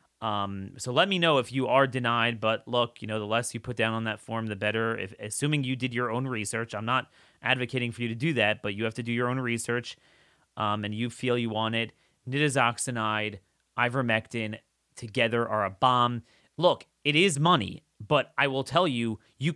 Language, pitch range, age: English, 115-140 Hz, 30-49